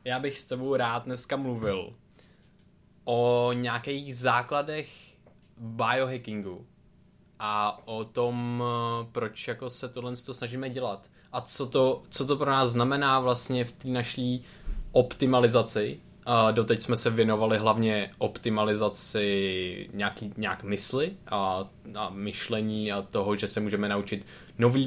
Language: Czech